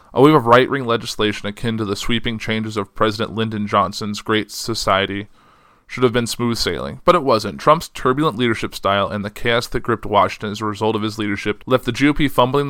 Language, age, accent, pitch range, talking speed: English, 20-39, American, 105-120 Hz, 210 wpm